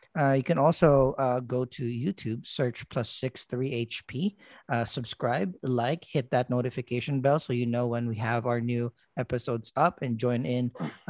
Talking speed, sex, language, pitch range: 180 wpm, male, English, 120-145 Hz